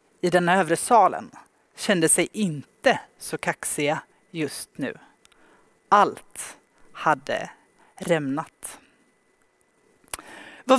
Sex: female